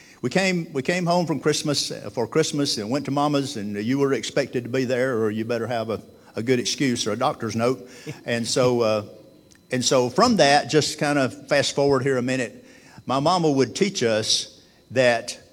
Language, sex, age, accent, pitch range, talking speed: English, male, 60-79, American, 110-145 Hz, 205 wpm